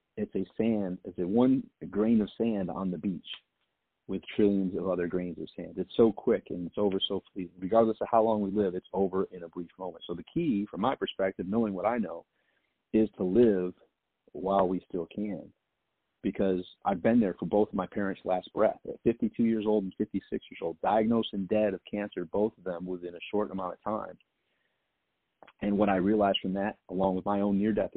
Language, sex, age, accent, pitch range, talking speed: English, male, 40-59, American, 95-110 Hz, 210 wpm